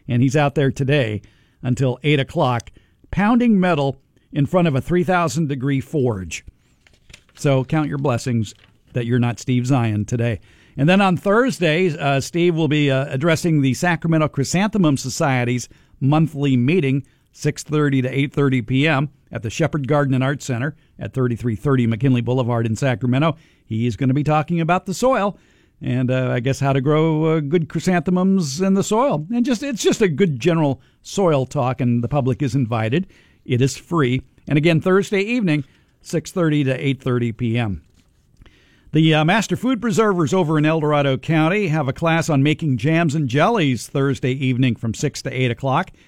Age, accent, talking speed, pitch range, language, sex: 50-69, American, 170 wpm, 125-160 Hz, English, male